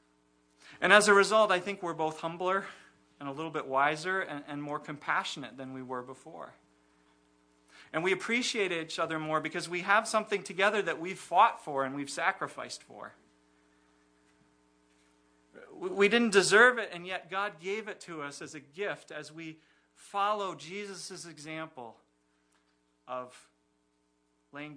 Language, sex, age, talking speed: English, male, 40-59, 150 wpm